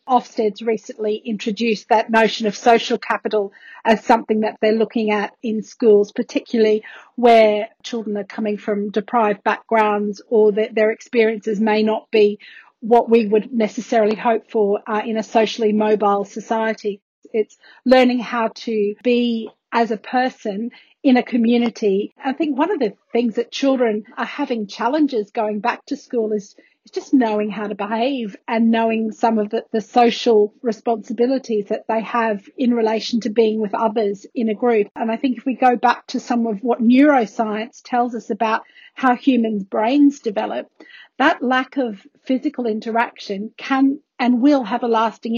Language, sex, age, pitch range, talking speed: English, female, 40-59, 215-245 Hz, 165 wpm